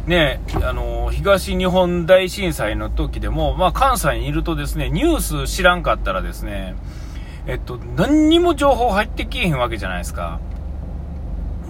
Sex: male